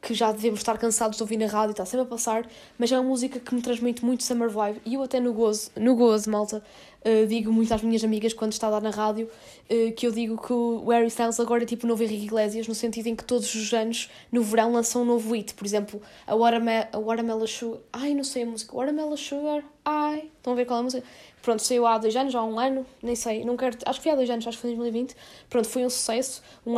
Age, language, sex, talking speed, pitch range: 10-29, Portuguese, female, 280 wpm, 225-255 Hz